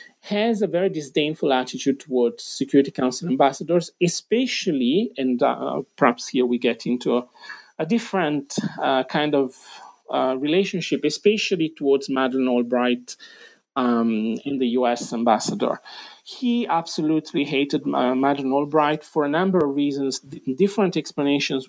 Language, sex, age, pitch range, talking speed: English, male, 40-59, 130-200 Hz, 130 wpm